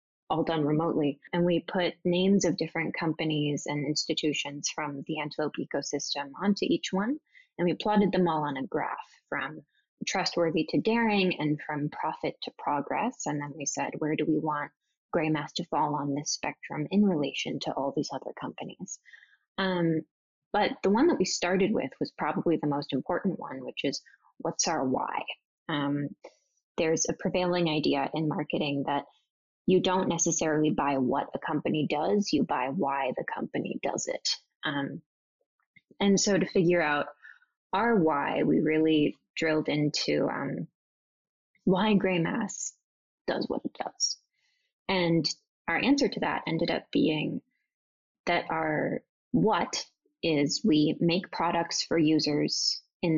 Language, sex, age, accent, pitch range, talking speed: English, female, 10-29, American, 150-185 Hz, 155 wpm